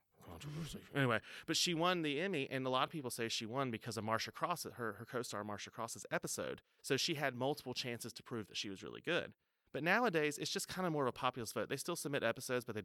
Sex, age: male, 30-49